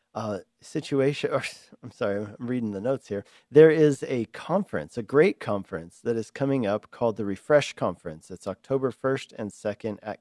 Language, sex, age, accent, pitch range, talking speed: English, male, 40-59, American, 105-130 Hz, 175 wpm